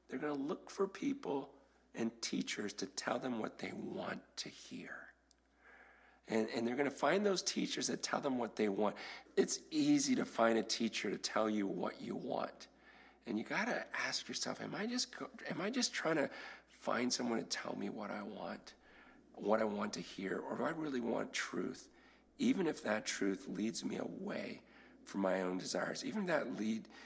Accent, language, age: American, English, 40-59